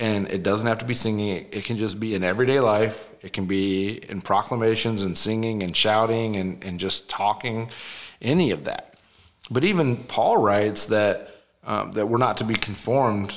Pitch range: 95-115 Hz